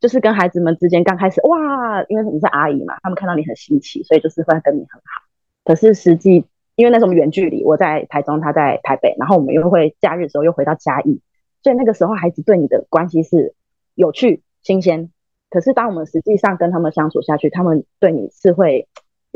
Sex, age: female, 20-39